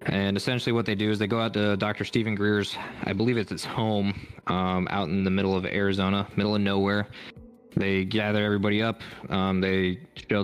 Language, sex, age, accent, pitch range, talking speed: English, male, 20-39, American, 95-105 Hz, 200 wpm